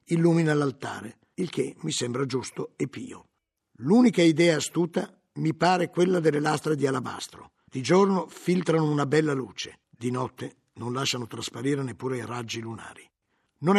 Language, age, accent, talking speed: Italian, 50-69, native, 150 wpm